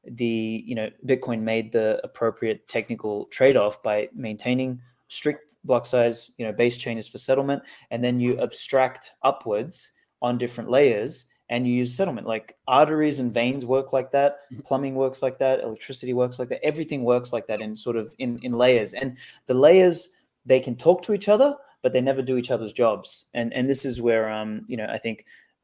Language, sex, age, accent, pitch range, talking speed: English, male, 20-39, Australian, 115-140 Hz, 195 wpm